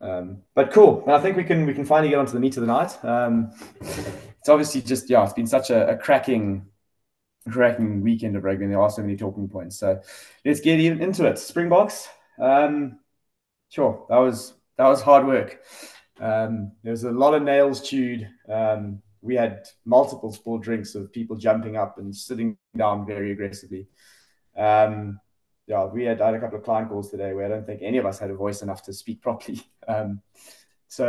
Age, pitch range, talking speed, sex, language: 20-39, 105-130 Hz, 205 wpm, male, English